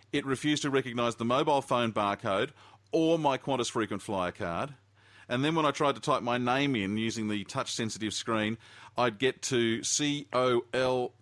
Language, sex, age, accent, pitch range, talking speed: English, male, 40-59, Australian, 105-130 Hz, 185 wpm